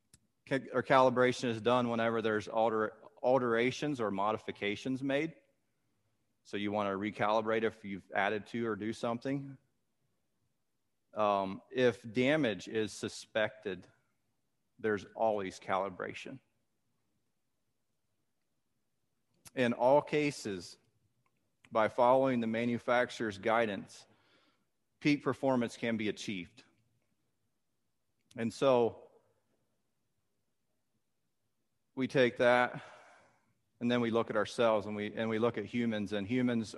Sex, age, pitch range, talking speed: male, 40-59, 105-125 Hz, 100 wpm